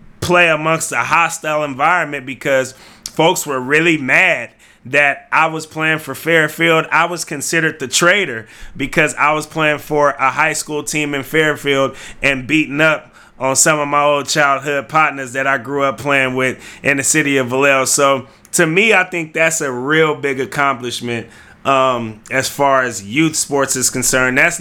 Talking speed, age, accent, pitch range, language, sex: 175 wpm, 20-39, American, 120-145 Hz, English, male